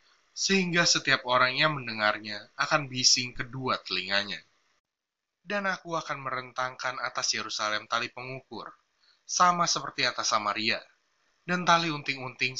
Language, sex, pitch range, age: Indonesian, male, 120-150 Hz, 20-39